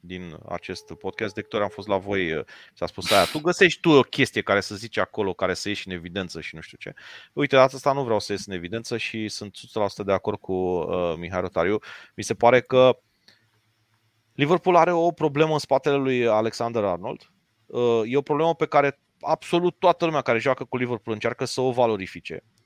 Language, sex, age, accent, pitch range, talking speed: Romanian, male, 30-49, native, 105-140 Hz, 200 wpm